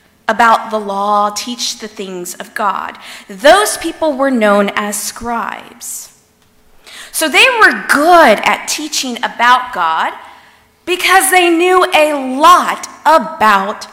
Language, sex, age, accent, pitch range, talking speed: English, female, 40-59, American, 225-300 Hz, 120 wpm